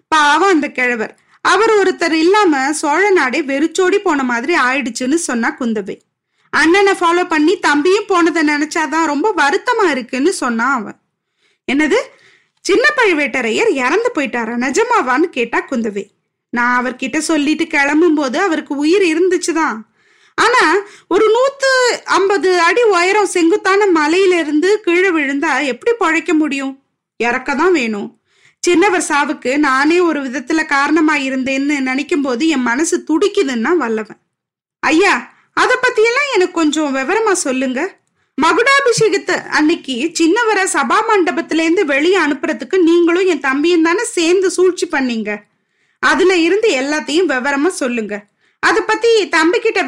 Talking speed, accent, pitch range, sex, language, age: 115 wpm, native, 285-385 Hz, female, Tamil, 20-39